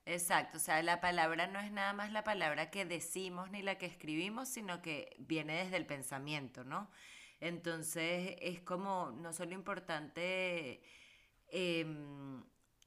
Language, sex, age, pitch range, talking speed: Spanish, female, 30-49, 155-190 Hz, 145 wpm